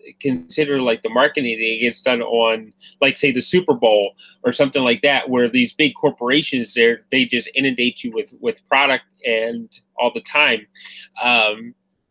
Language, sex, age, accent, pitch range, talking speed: English, male, 30-49, American, 120-180 Hz, 170 wpm